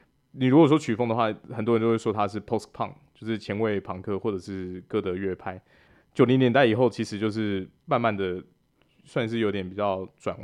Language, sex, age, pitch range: Chinese, male, 20-39, 100-120 Hz